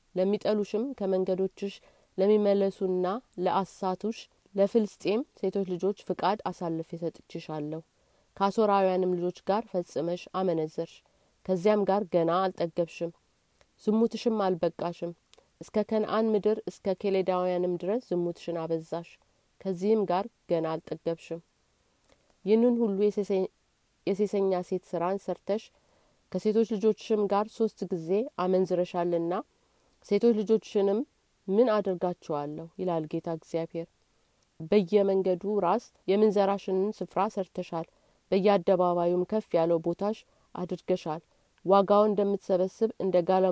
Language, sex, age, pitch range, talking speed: Amharic, female, 30-49, 175-210 Hz, 90 wpm